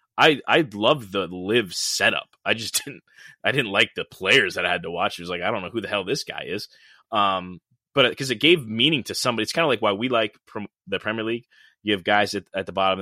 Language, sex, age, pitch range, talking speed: English, male, 20-39, 95-115 Hz, 265 wpm